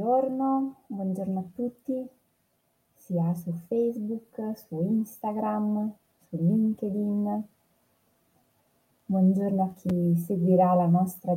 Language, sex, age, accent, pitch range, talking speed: Italian, female, 20-39, native, 175-215 Hz, 90 wpm